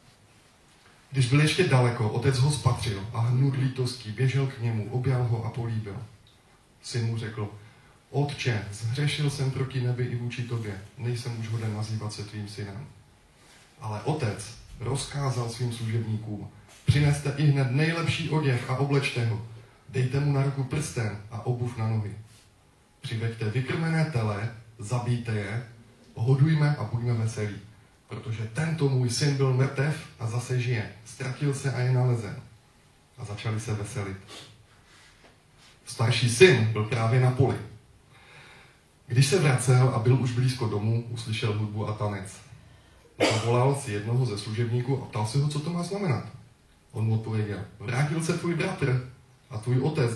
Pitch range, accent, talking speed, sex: 110-135 Hz, native, 150 wpm, male